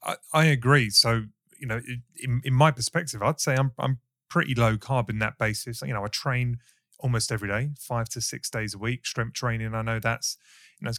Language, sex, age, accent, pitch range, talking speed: English, male, 30-49, British, 110-130 Hz, 225 wpm